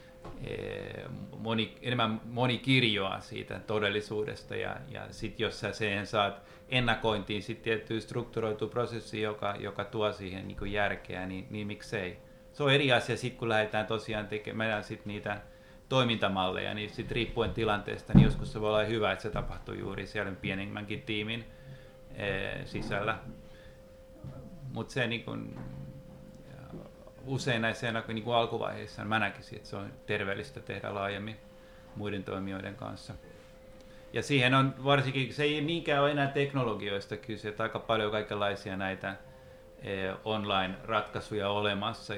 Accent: native